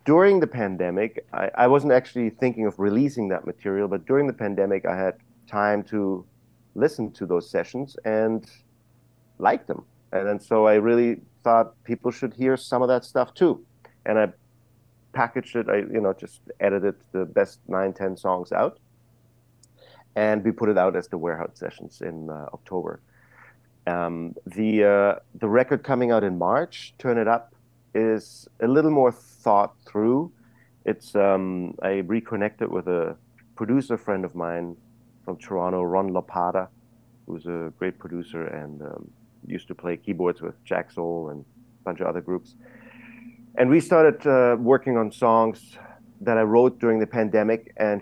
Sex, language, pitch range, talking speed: male, English, 95-120 Hz, 165 wpm